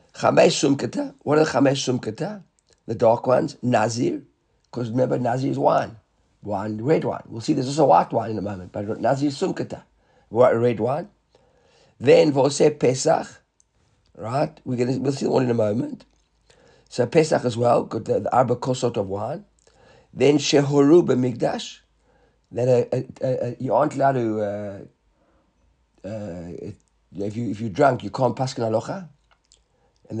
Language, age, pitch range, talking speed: English, 50-69, 110-135 Hz, 150 wpm